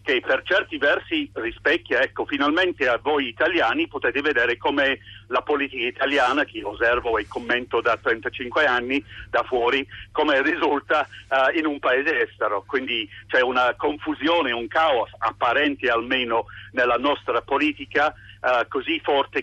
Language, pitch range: Italian, 120-165 Hz